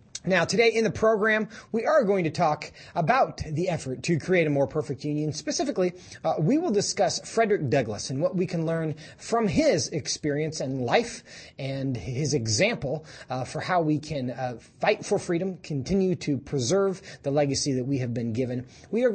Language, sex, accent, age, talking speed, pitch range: English, male, American, 30-49, 190 wpm, 135-200 Hz